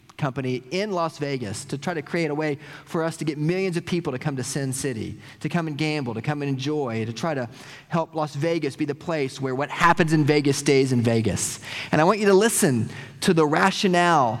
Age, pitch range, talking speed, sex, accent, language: 30-49, 125-170 Hz, 235 wpm, male, American, English